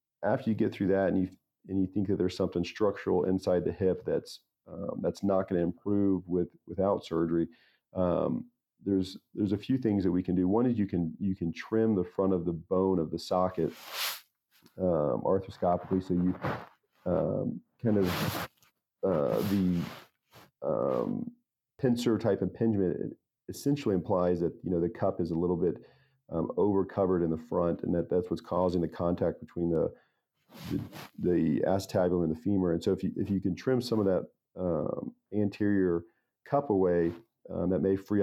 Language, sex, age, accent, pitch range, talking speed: English, male, 40-59, American, 85-100 Hz, 180 wpm